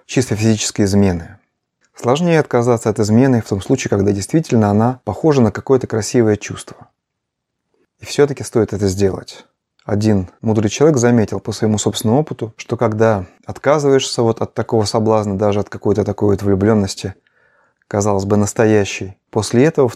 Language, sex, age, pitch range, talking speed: Russian, male, 30-49, 100-125 Hz, 145 wpm